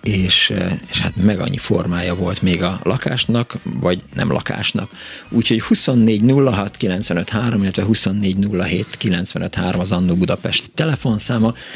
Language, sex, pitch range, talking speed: Hungarian, male, 90-110 Hz, 105 wpm